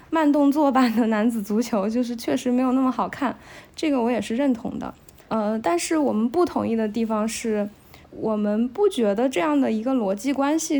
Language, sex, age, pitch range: Chinese, female, 20-39, 215-270 Hz